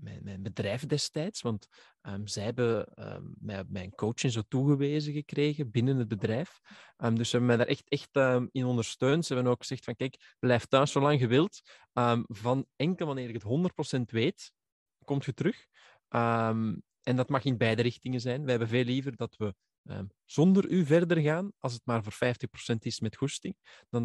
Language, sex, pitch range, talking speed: Dutch, male, 115-145 Hz, 190 wpm